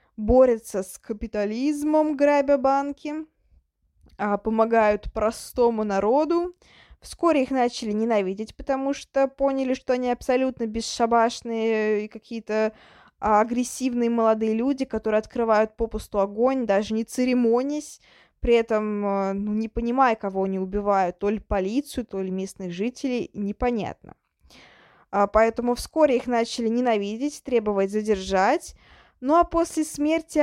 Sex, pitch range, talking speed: female, 210-265 Hz, 115 wpm